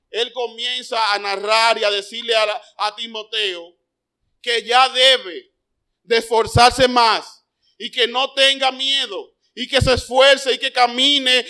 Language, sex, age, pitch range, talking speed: Spanish, male, 40-59, 220-260 Hz, 145 wpm